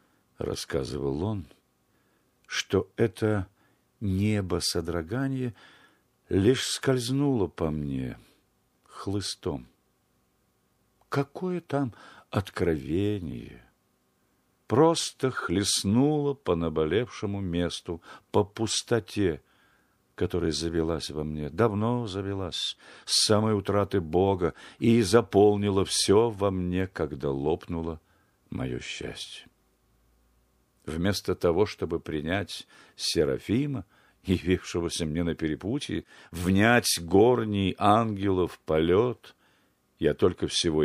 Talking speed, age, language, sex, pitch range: 80 wpm, 50-69, Russian, male, 80-110 Hz